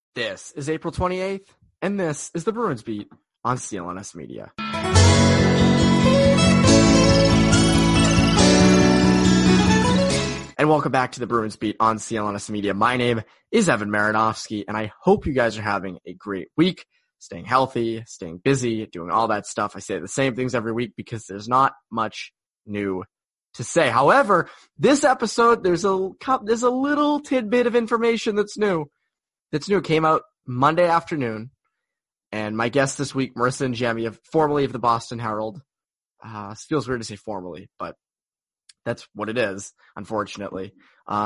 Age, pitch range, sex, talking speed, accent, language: 20-39, 110-160 Hz, male, 155 wpm, American, English